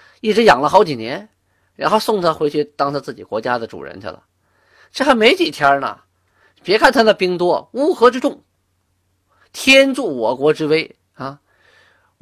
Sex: male